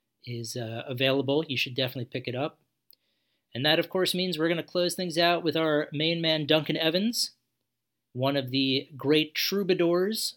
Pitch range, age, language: 125-155 Hz, 40-59, English